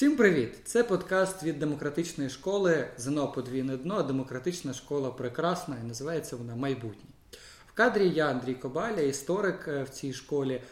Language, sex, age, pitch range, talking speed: Ukrainian, male, 20-39, 130-165 Hz, 140 wpm